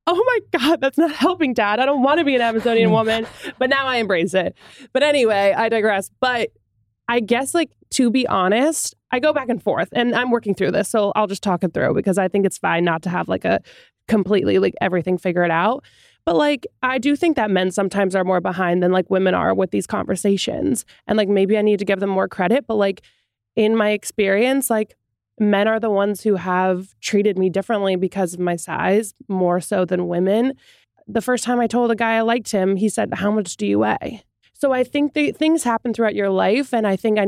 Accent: American